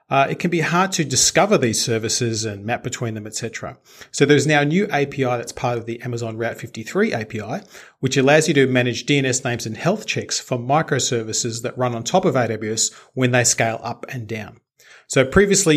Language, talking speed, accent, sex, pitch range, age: English, 205 wpm, Australian, male, 115-140 Hz, 30-49